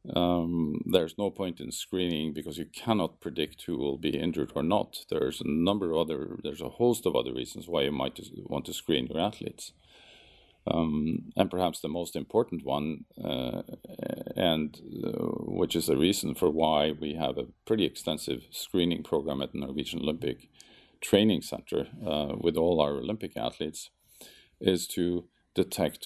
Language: English